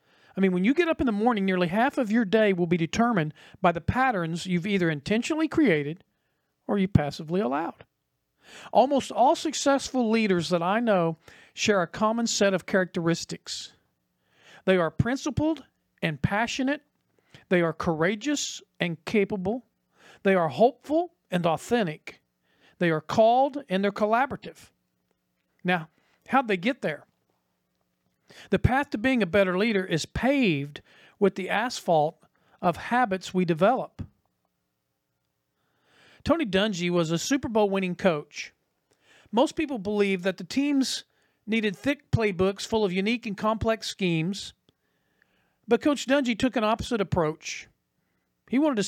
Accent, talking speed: American, 140 wpm